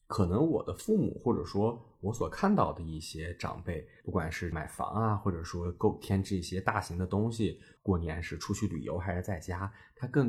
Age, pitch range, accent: 20-39, 90-120 Hz, native